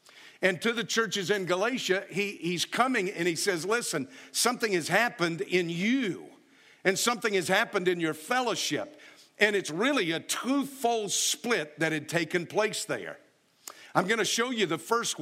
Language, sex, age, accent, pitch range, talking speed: English, male, 50-69, American, 150-200 Hz, 170 wpm